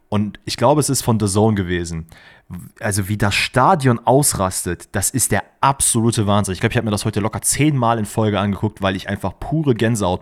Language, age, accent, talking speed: German, 20-39, German, 210 wpm